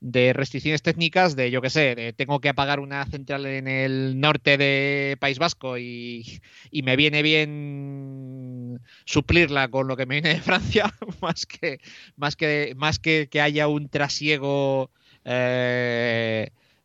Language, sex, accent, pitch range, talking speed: English, male, Spanish, 125-165 Hz, 155 wpm